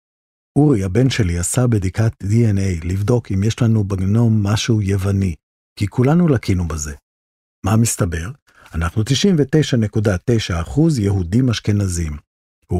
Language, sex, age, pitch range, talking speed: Hebrew, male, 50-69, 90-125 Hz, 115 wpm